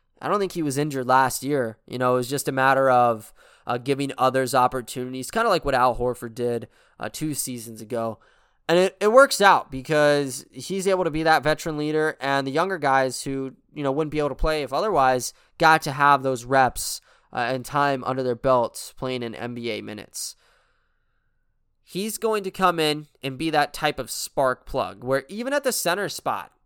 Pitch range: 125-155 Hz